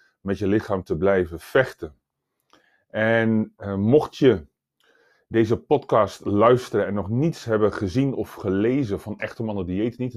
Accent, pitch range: Dutch, 95-115 Hz